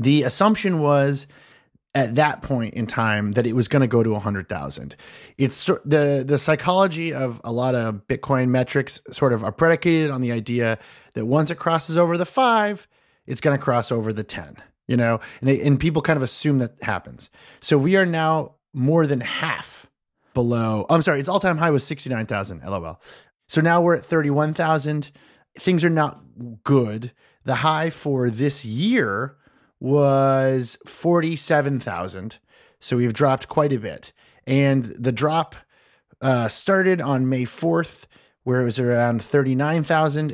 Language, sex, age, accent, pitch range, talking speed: English, male, 30-49, American, 120-155 Hz, 160 wpm